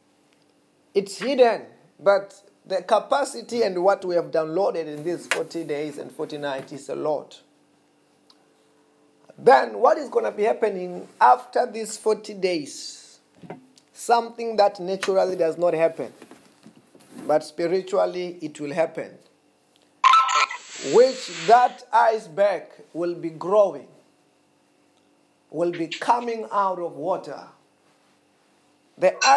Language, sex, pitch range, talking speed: English, male, 160-235 Hz, 110 wpm